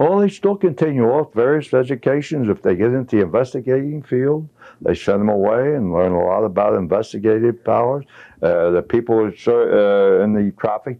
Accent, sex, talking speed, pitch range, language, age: American, male, 170 wpm, 95-125 Hz, English, 60-79